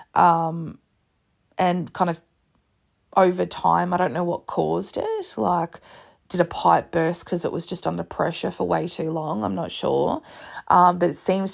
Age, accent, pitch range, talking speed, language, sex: 20-39, Australian, 170-190 Hz, 175 wpm, English, female